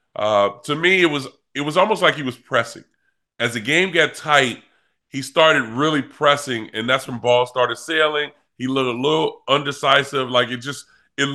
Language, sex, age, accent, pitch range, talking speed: English, female, 30-49, American, 125-150 Hz, 190 wpm